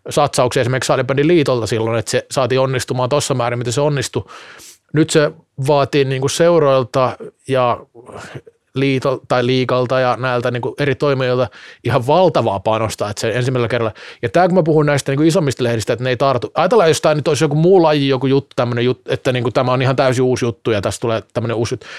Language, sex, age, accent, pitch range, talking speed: Finnish, male, 30-49, native, 120-145 Hz, 200 wpm